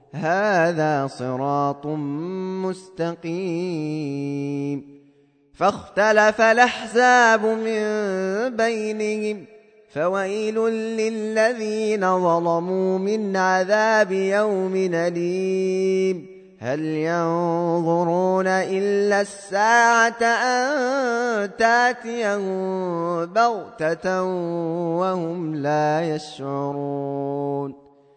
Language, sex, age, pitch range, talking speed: Arabic, male, 20-39, 175-220 Hz, 50 wpm